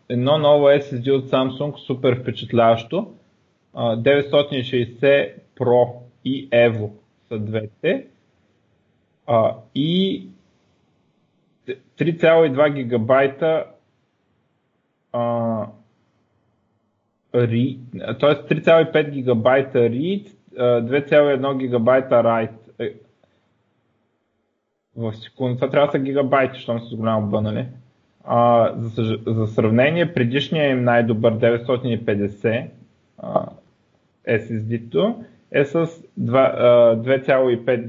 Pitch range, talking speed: 115-135 Hz, 65 wpm